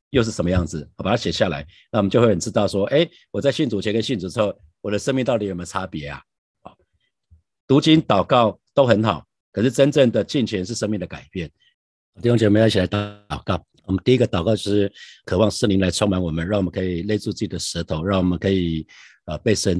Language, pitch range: Chinese, 90-105 Hz